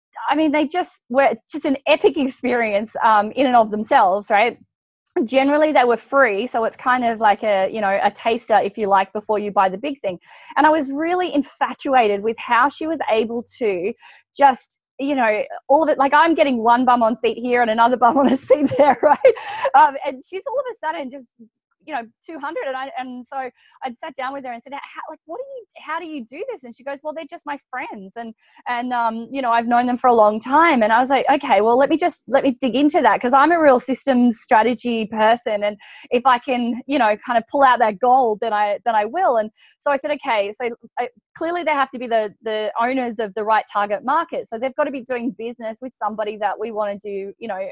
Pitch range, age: 225-285 Hz, 20-39